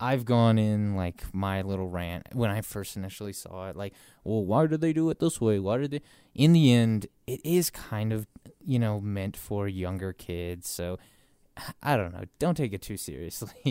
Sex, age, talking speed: male, 20-39, 205 wpm